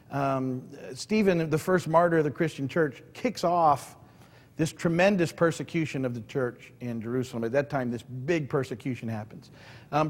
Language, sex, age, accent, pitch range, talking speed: English, male, 50-69, American, 125-155 Hz, 160 wpm